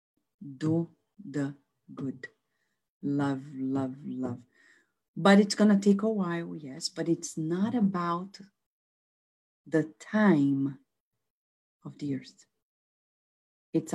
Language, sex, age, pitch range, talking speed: English, female, 40-59, 135-195 Hz, 105 wpm